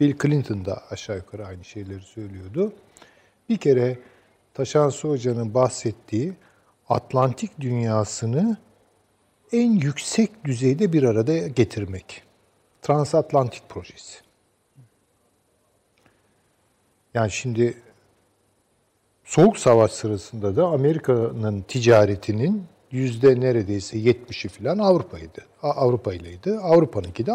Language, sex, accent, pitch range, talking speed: Turkish, male, native, 105-145 Hz, 85 wpm